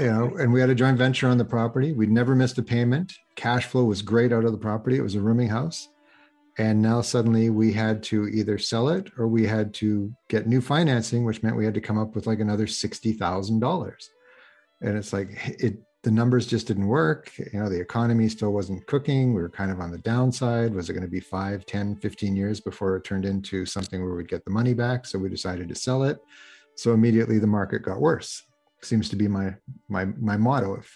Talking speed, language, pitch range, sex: 230 wpm, English, 100-125 Hz, male